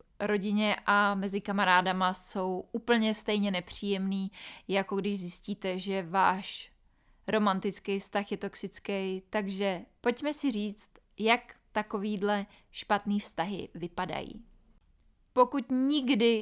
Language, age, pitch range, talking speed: Czech, 20-39, 195-220 Hz, 100 wpm